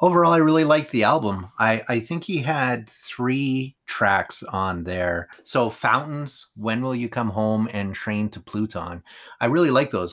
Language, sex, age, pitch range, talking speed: English, male, 30-49, 95-115 Hz, 180 wpm